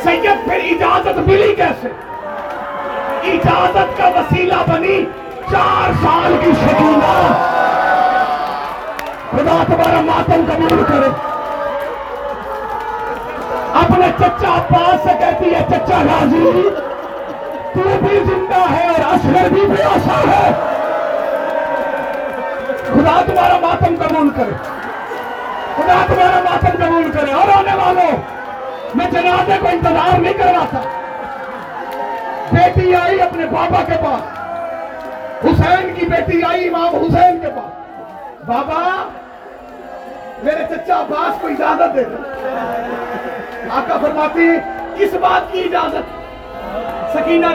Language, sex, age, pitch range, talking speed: Urdu, male, 40-59, 315-365 Hz, 105 wpm